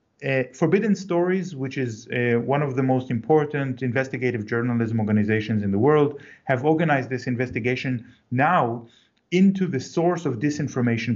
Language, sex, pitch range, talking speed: English, male, 120-155 Hz, 145 wpm